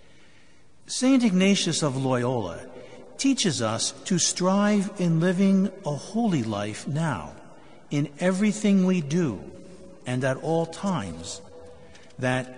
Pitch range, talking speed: 125-185 Hz, 110 wpm